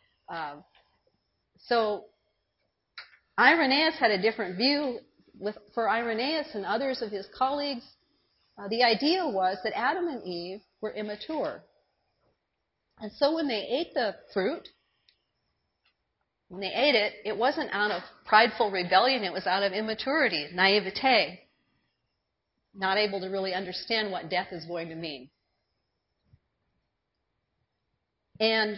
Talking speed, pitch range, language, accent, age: 125 wpm, 190-250 Hz, English, American, 40-59